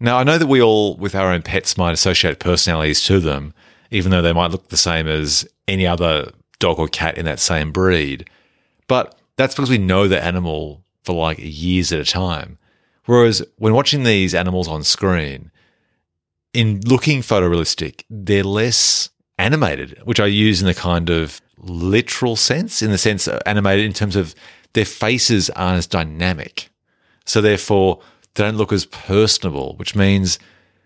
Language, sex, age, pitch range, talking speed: English, male, 30-49, 80-100 Hz, 170 wpm